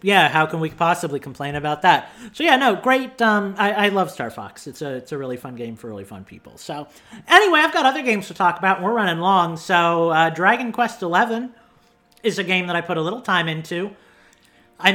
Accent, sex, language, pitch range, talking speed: American, male, English, 160-220 Hz, 225 wpm